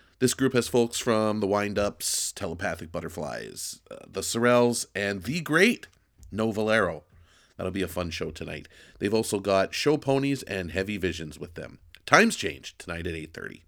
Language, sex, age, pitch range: English, male, 40-59, 90-120 Hz